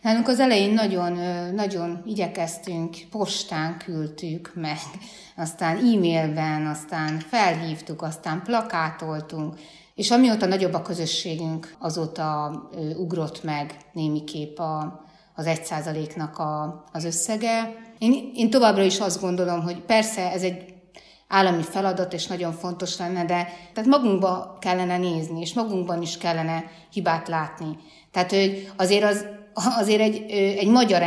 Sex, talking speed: female, 125 wpm